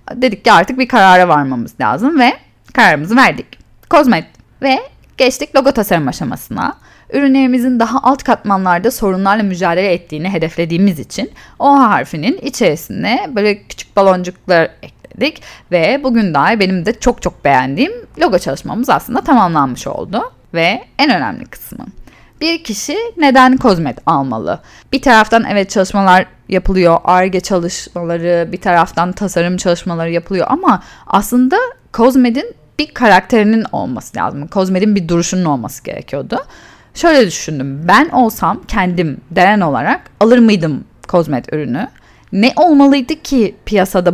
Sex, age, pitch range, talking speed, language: female, 10-29, 175-255 Hz, 125 wpm, Turkish